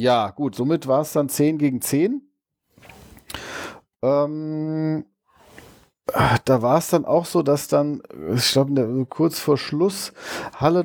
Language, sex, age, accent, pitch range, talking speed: German, male, 40-59, German, 120-155 Hz, 140 wpm